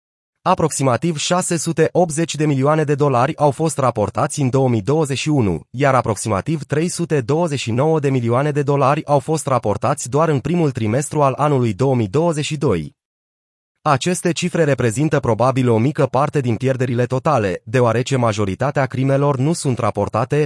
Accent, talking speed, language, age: native, 130 wpm, Romanian, 30-49